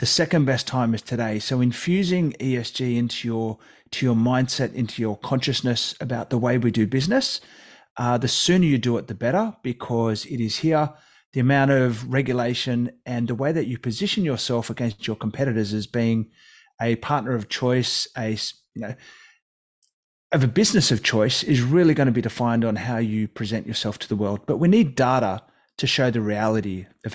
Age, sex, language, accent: 30-49, male, English, Australian